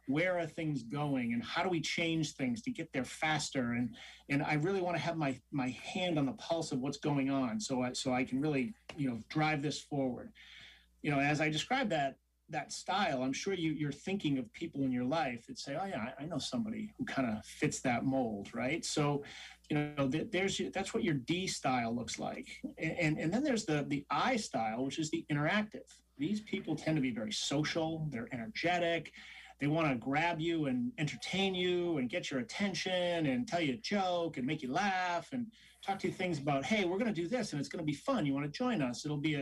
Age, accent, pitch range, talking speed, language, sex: 30-49, American, 140-190 Hz, 235 wpm, English, male